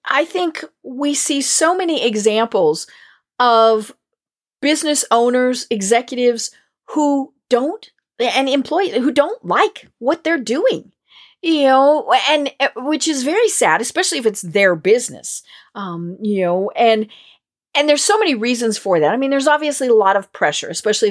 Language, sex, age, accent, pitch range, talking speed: English, female, 40-59, American, 190-275 Hz, 150 wpm